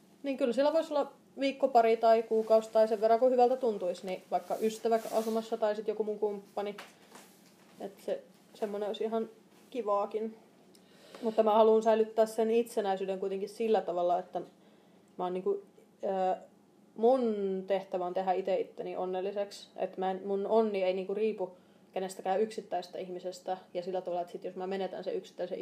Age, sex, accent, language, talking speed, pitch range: 30-49, female, native, Finnish, 160 wpm, 190-225 Hz